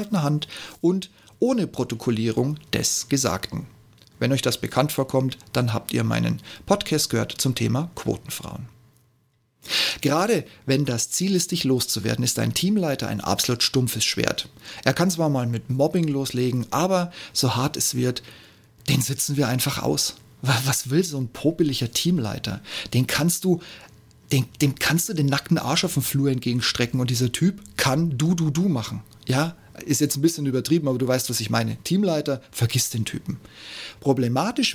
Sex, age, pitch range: male, 40-59, 115-160 Hz